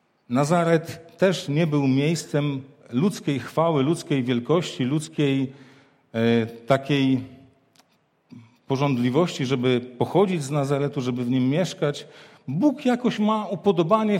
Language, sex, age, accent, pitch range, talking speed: Polish, male, 50-69, native, 140-175 Hz, 100 wpm